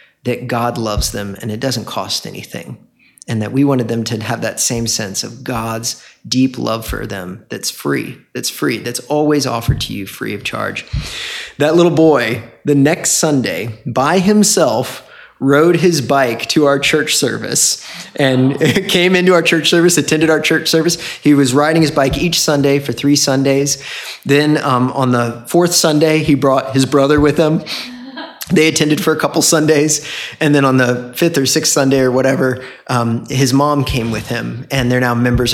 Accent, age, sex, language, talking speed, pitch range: American, 30-49, male, English, 185 wpm, 120-155 Hz